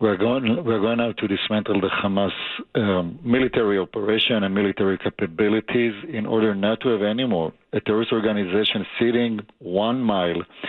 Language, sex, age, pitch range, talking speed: English, male, 50-69, 105-120 Hz, 150 wpm